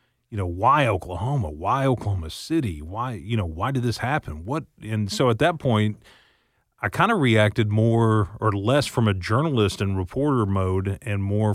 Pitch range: 95-110 Hz